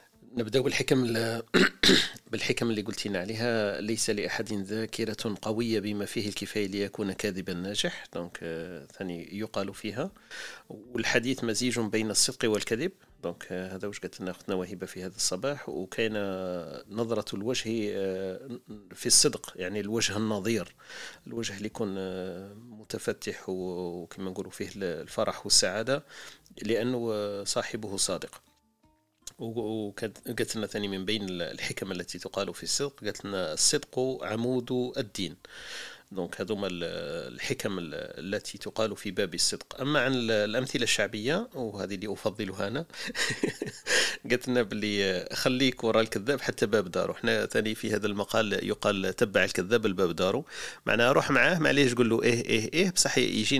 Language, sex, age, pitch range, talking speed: Arabic, male, 40-59, 100-120 Hz, 125 wpm